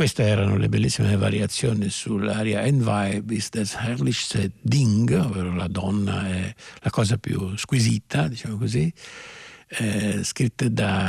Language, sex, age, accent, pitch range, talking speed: Italian, male, 60-79, native, 100-120 Hz, 130 wpm